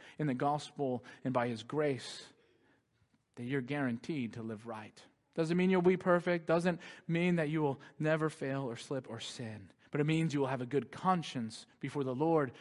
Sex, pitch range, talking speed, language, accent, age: male, 125-180 Hz, 195 wpm, English, American, 40-59